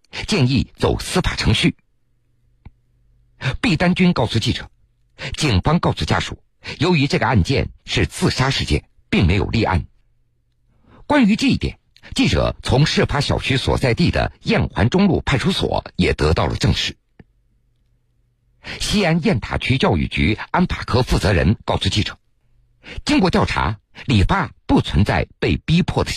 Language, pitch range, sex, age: Chinese, 110-135 Hz, male, 50-69